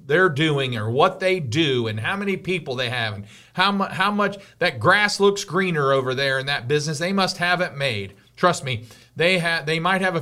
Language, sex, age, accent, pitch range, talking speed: English, male, 40-59, American, 125-170 Hz, 225 wpm